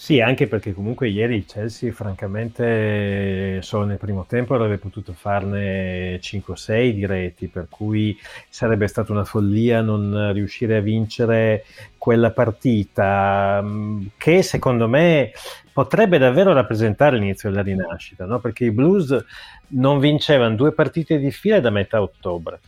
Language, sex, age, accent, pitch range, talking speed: Italian, male, 30-49, native, 105-140 Hz, 140 wpm